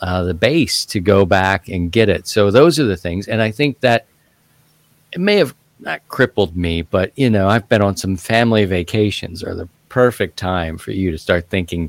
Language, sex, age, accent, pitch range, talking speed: English, male, 40-59, American, 90-120 Hz, 210 wpm